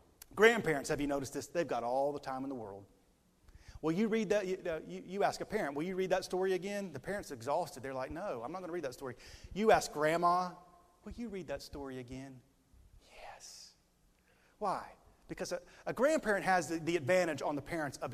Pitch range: 130-175 Hz